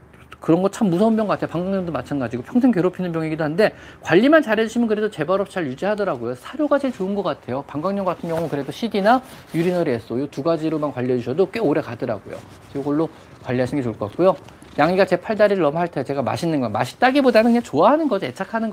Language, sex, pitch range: Korean, male, 145-230 Hz